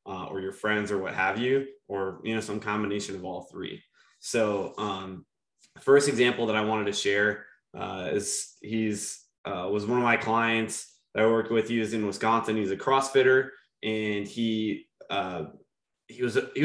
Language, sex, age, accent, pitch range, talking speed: English, male, 20-39, American, 105-125 Hz, 185 wpm